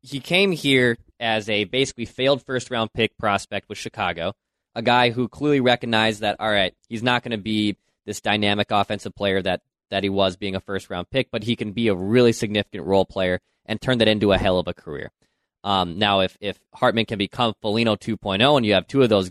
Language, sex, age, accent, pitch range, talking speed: English, male, 20-39, American, 100-120 Hz, 220 wpm